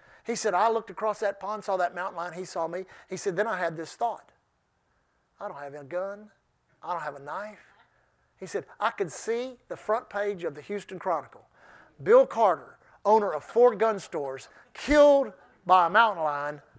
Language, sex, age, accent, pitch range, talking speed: English, male, 50-69, American, 215-295 Hz, 195 wpm